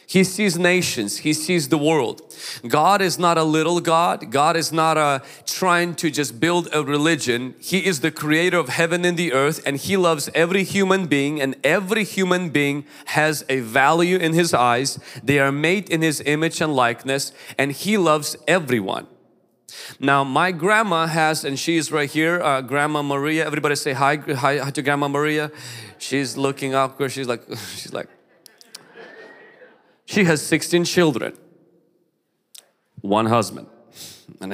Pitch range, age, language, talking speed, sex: 130-165 Hz, 30-49, English, 165 wpm, male